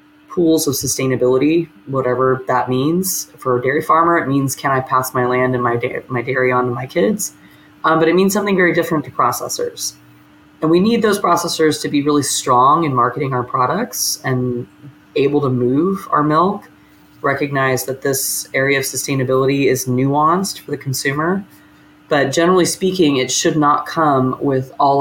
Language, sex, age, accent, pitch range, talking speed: English, female, 20-39, American, 125-155 Hz, 175 wpm